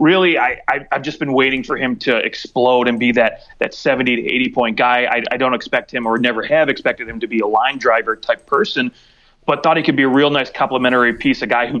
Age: 30-49